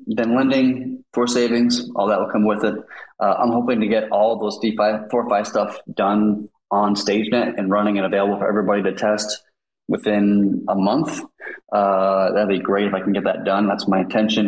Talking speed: 205 wpm